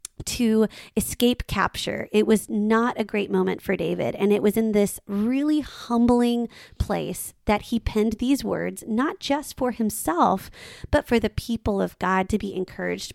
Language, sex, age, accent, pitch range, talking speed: English, female, 20-39, American, 195-235 Hz, 170 wpm